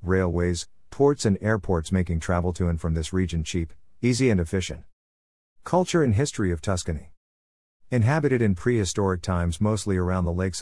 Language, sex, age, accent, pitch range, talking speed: English, male, 50-69, American, 90-115 Hz, 160 wpm